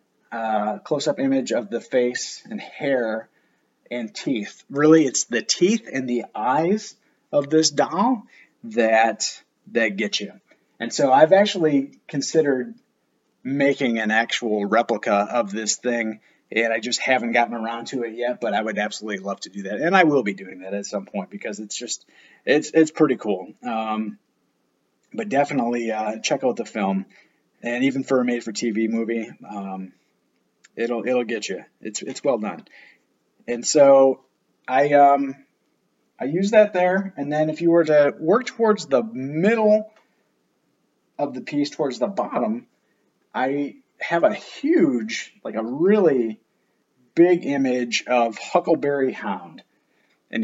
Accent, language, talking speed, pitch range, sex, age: American, English, 155 wpm, 115-165 Hz, male, 30-49